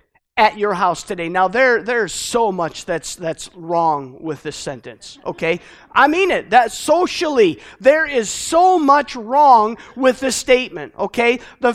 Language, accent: English, American